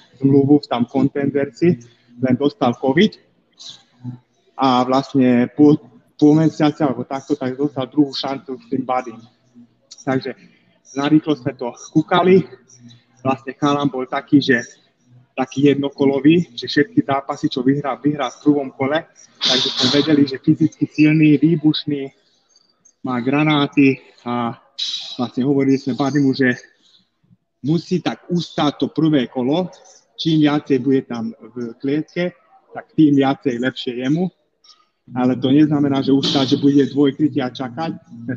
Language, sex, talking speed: Czech, male, 135 wpm